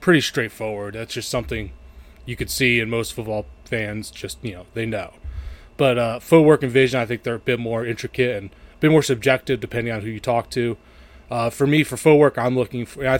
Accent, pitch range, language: American, 105-125 Hz, English